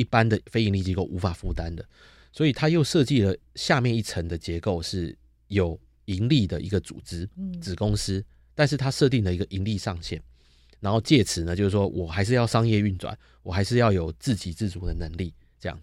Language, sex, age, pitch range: Chinese, male, 30-49, 90-120 Hz